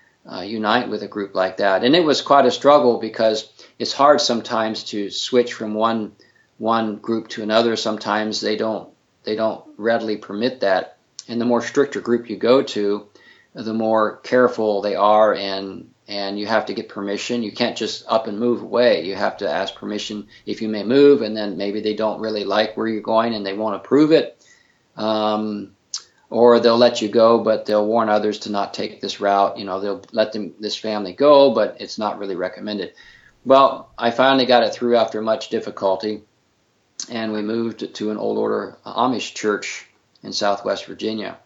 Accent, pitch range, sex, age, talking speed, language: American, 105-115 Hz, male, 50-69, 195 wpm, English